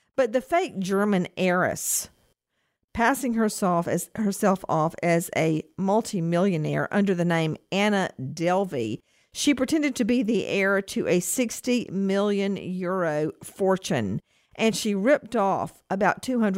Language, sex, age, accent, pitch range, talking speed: English, female, 50-69, American, 160-210 Hz, 125 wpm